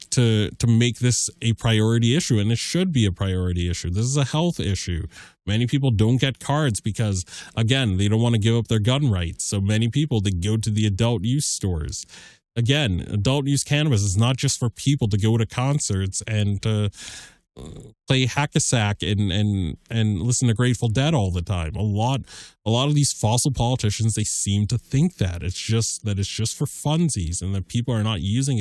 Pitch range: 105-130 Hz